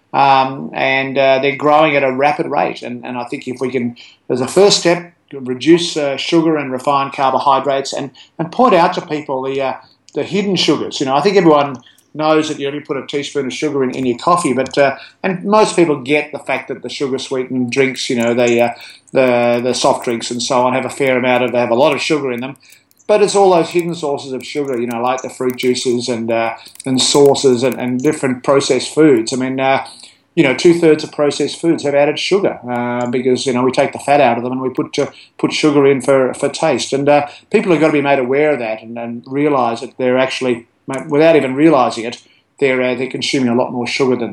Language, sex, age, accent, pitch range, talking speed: English, male, 30-49, Australian, 125-150 Hz, 240 wpm